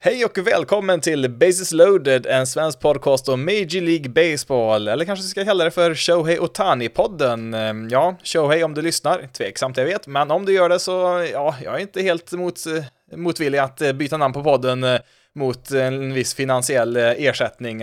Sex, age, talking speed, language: male, 20-39, 185 wpm, Swedish